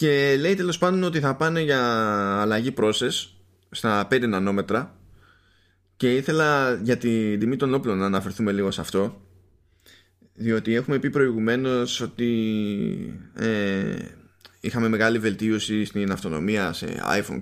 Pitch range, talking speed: 95-125 Hz, 130 wpm